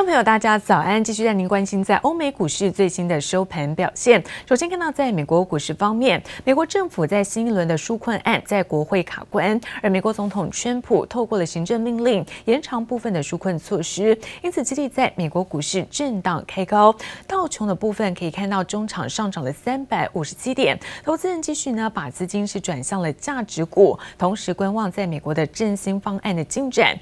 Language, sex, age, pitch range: Chinese, female, 20-39, 175-235 Hz